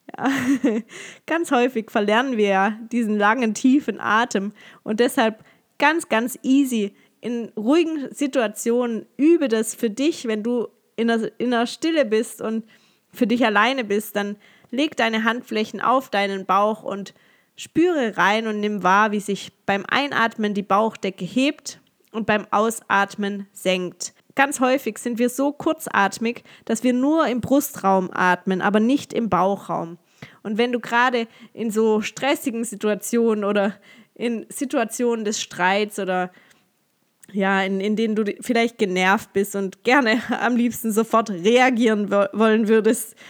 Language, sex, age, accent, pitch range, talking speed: German, female, 20-39, German, 200-245 Hz, 145 wpm